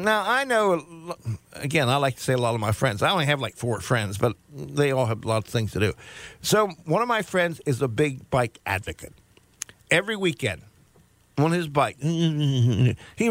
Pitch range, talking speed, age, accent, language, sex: 120-175 Hz, 200 wpm, 50-69, American, English, male